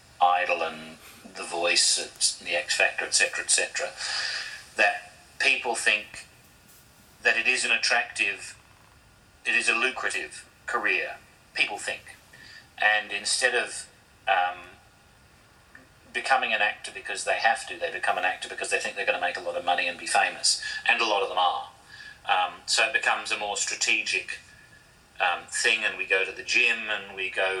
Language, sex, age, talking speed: English, male, 40-59, 165 wpm